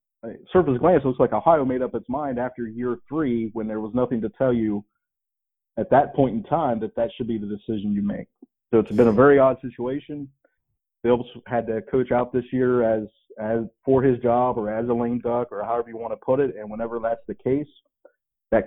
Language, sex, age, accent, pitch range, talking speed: English, male, 30-49, American, 110-130 Hz, 225 wpm